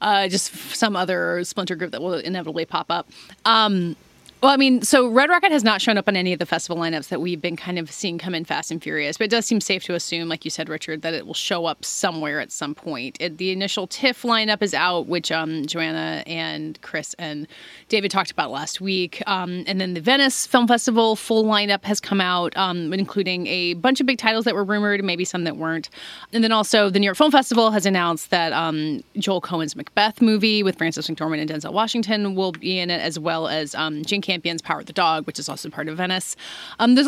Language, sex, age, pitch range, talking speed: English, female, 30-49, 165-215 Hz, 240 wpm